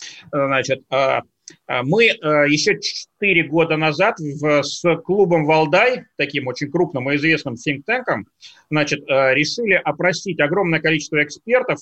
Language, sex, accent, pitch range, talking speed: Russian, male, native, 150-185 Hz, 100 wpm